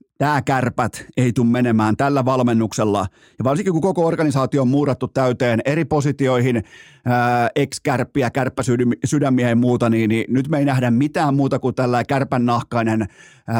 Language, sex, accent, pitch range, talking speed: Finnish, male, native, 120-160 Hz, 140 wpm